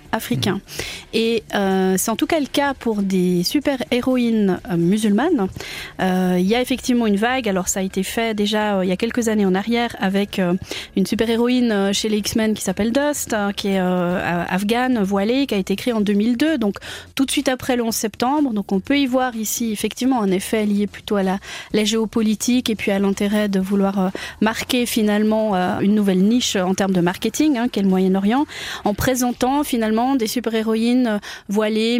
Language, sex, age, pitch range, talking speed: French, female, 30-49, 200-245 Hz, 205 wpm